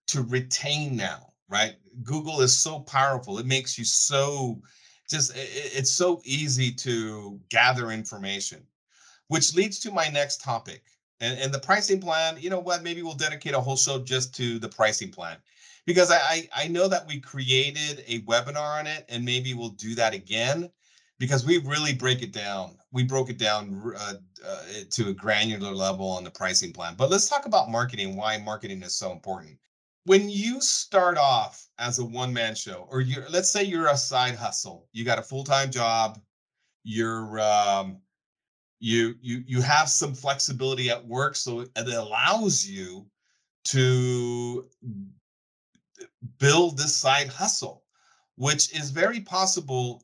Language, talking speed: English, 160 wpm